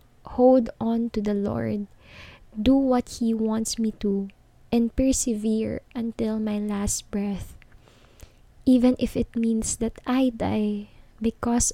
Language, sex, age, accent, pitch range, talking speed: Filipino, female, 20-39, native, 215-235 Hz, 130 wpm